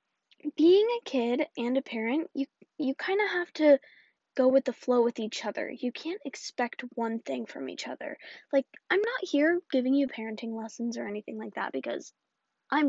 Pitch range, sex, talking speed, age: 235-300 Hz, female, 190 wpm, 10-29